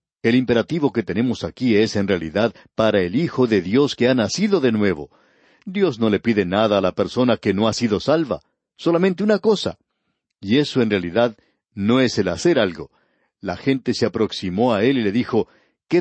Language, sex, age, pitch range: Spanish, male, 60-79, 110-155 Hz